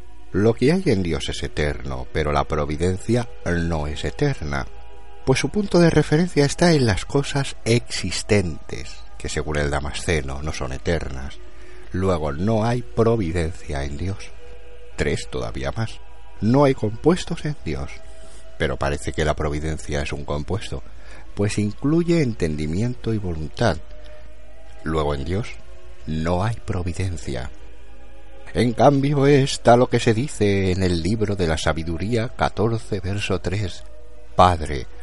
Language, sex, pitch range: Spanish, male, 75-115 Hz